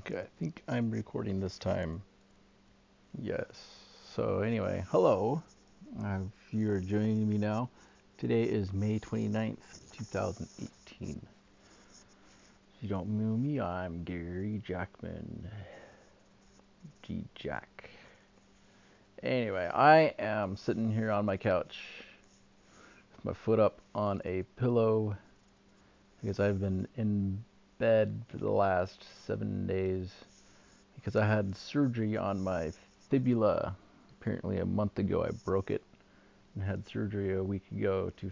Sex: male